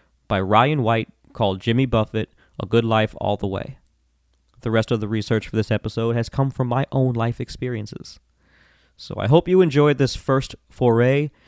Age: 20-39